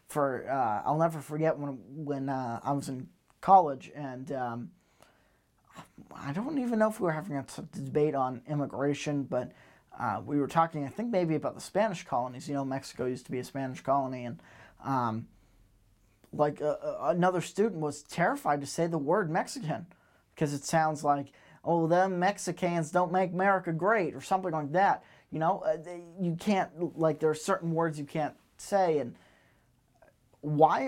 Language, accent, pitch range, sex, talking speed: English, American, 140-175 Hz, male, 175 wpm